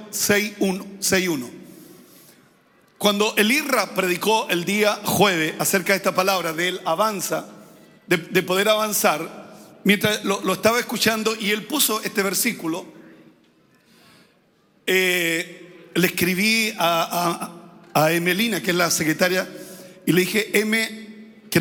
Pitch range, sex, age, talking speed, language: 180-215 Hz, male, 40-59, 120 wpm, Spanish